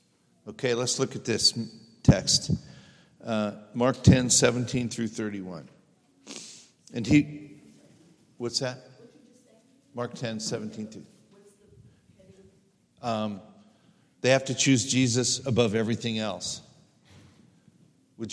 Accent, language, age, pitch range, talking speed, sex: American, English, 50-69, 110-135 Hz, 100 wpm, male